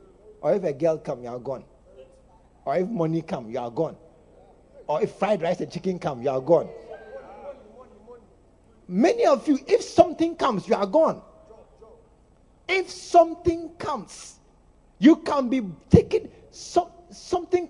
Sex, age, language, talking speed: male, 50-69, English, 140 wpm